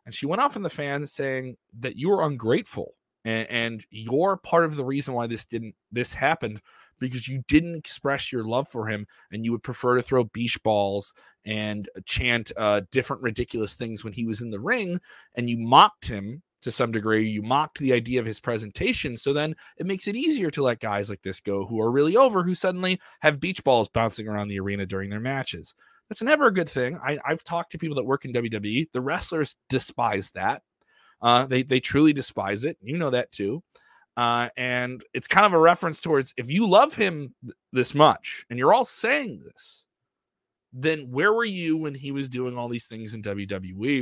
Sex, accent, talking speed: male, American, 210 wpm